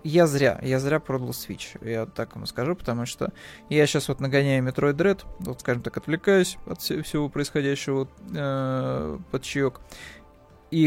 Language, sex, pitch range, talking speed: Russian, male, 125-145 Hz, 155 wpm